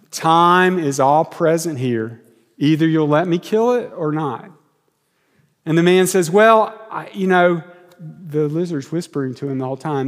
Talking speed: 175 wpm